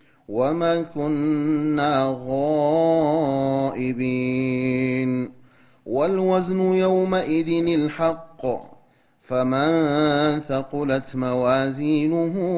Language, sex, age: Amharic, male, 30-49